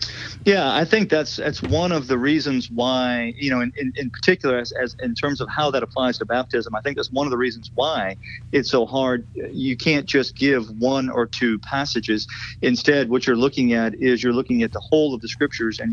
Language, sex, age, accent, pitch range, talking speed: English, male, 40-59, American, 115-130 Hz, 225 wpm